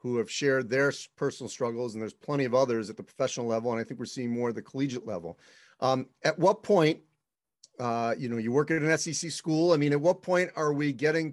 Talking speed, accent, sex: 245 wpm, American, male